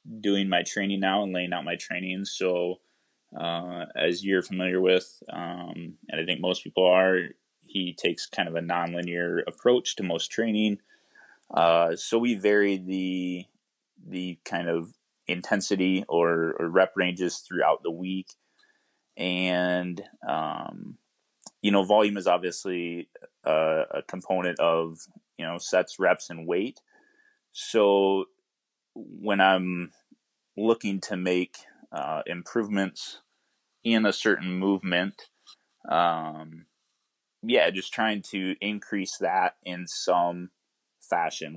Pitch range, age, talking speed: 85-100 Hz, 20-39, 125 wpm